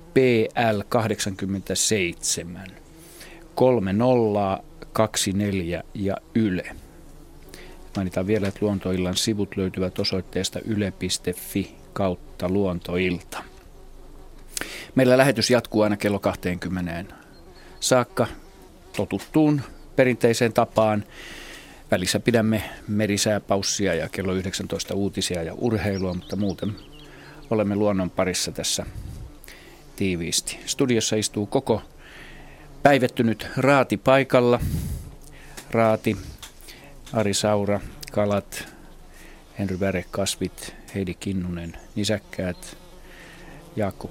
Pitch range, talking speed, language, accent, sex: 95-120 Hz, 80 wpm, Finnish, native, male